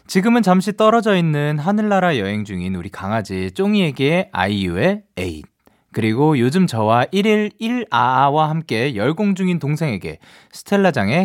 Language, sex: Korean, male